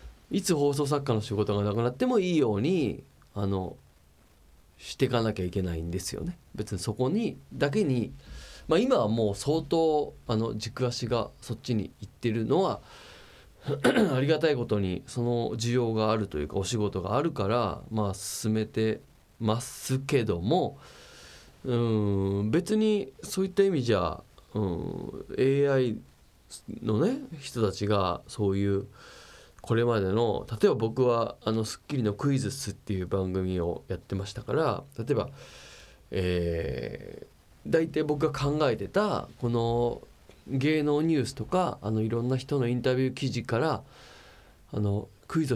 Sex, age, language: male, 20-39, Japanese